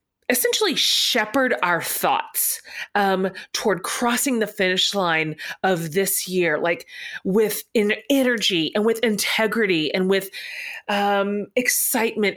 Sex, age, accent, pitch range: female, 30-49, American, 185-255 Hz